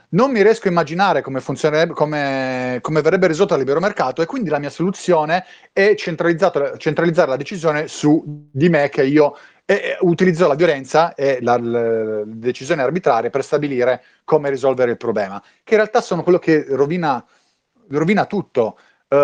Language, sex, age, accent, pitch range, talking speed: Italian, male, 30-49, native, 125-165 Hz, 165 wpm